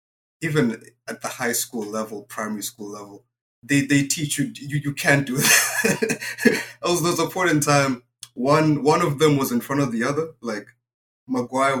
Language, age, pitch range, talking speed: English, 20-39, 115-145 Hz, 185 wpm